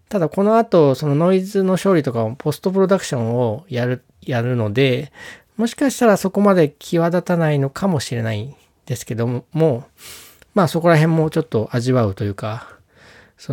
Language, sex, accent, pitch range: Japanese, male, native, 120-170 Hz